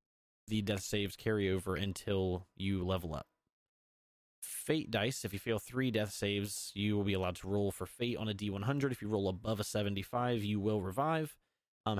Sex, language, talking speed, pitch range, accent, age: male, English, 190 wpm, 95-115 Hz, American, 30-49